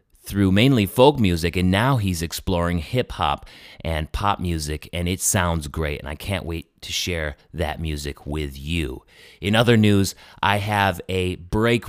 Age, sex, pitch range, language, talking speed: 30-49, male, 85-100 Hz, English, 165 wpm